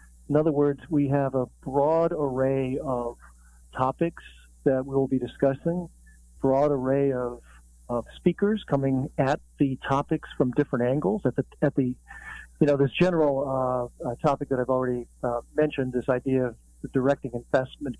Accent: American